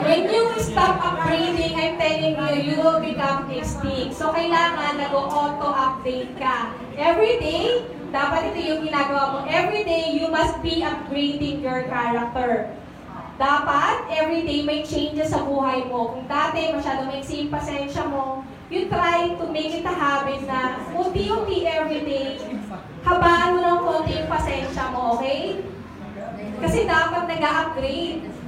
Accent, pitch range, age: Filipino, 275-330 Hz, 20-39